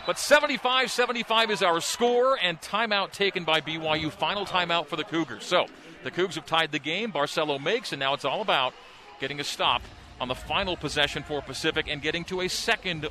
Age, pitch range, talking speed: 40-59, 145-175 Hz, 195 wpm